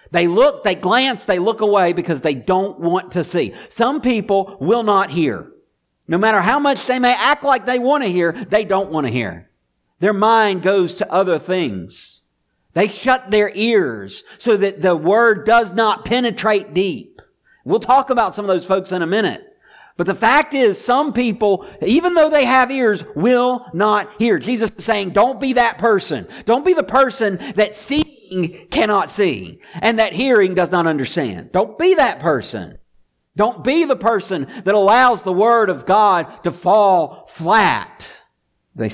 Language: English